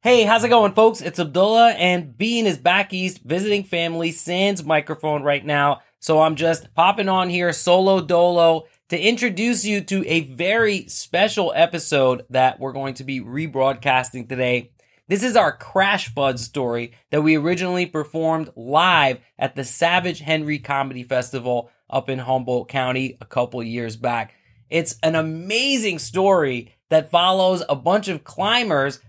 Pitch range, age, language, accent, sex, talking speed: 130-185 Hz, 30-49, English, American, male, 155 wpm